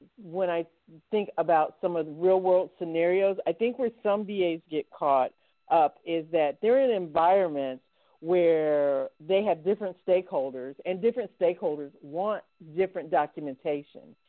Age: 50-69